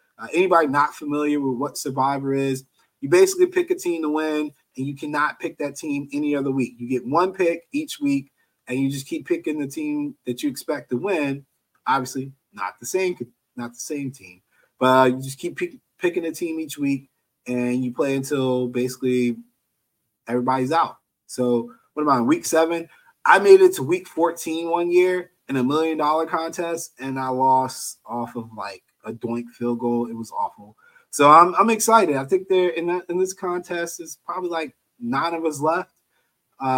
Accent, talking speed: American, 195 wpm